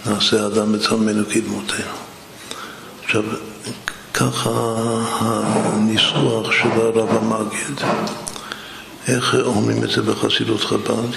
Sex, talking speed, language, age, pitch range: male, 85 wpm, Hebrew, 60-79, 105-115 Hz